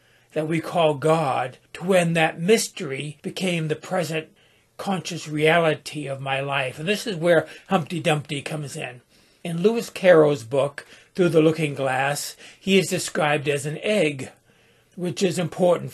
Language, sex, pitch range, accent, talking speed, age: English, male, 145-180 Hz, American, 155 wpm, 60-79